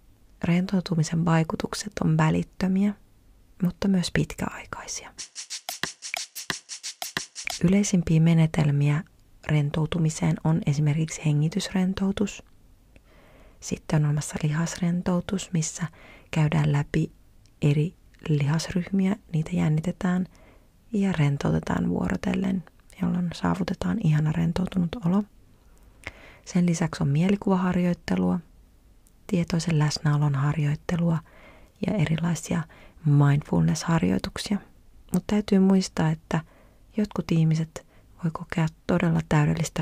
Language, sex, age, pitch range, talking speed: Finnish, female, 30-49, 155-185 Hz, 80 wpm